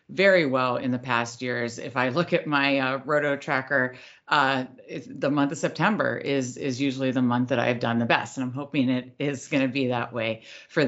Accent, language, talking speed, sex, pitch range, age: American, English, 220 wpm, female, 130-175 Hz, 40-59